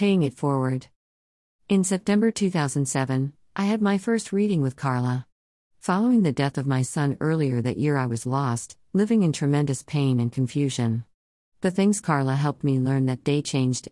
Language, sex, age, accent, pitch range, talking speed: English, female, 50-69, American, 130-155 Hz, 170 wpm